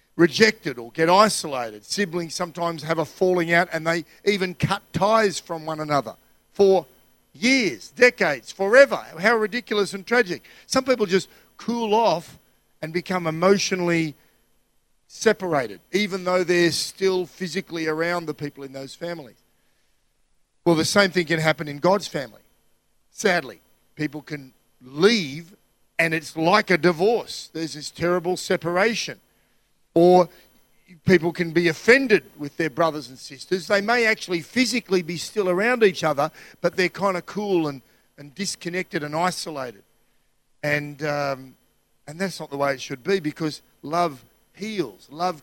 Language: English